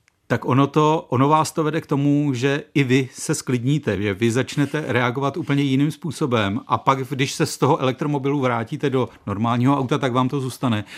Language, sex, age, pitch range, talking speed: Czech, male, 40-59, 120-140 Hz, 190 wpm